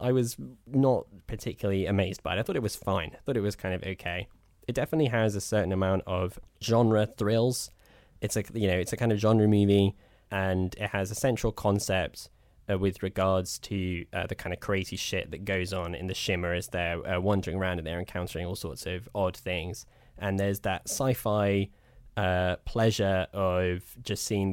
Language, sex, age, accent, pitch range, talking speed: English, male, 10-29, British, 90-105 Hz, 190 wpm